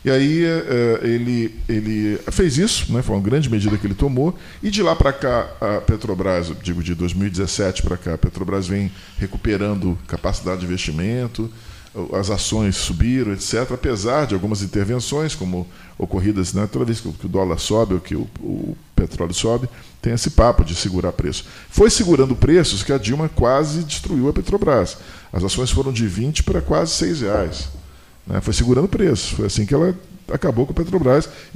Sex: male